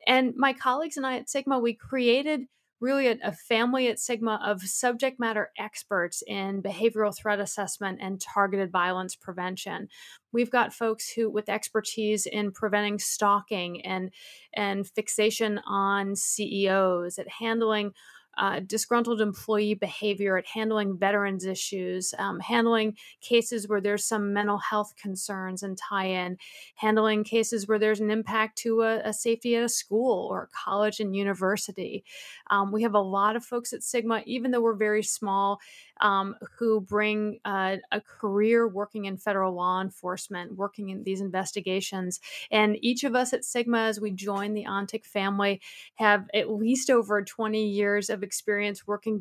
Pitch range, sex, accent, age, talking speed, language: 200-235 Hz, female, American, 30-49, 155 wpm, English